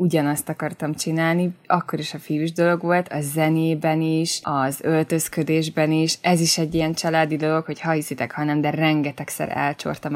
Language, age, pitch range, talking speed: Hungarian, 20-39, 150-180 Hz, 165 wpm